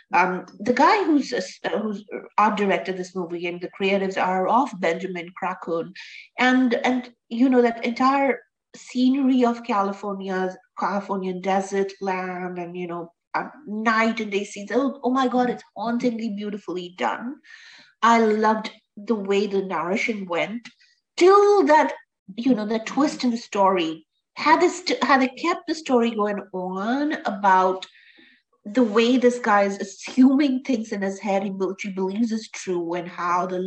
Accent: Indian